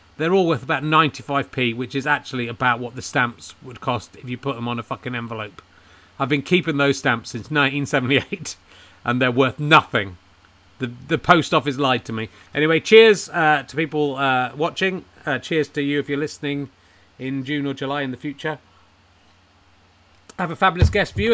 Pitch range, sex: 120-170 Hz, male